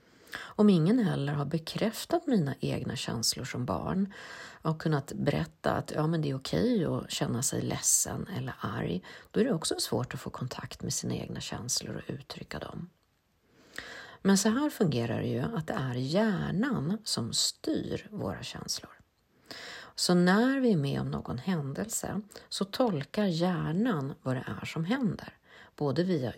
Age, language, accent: 40-59, Swedish, native